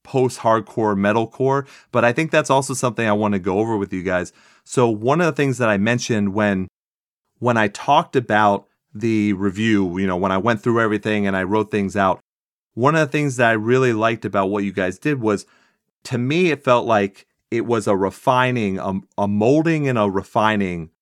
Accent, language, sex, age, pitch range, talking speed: American, English, male, 30-49, 100-125 Hz, 210 wpm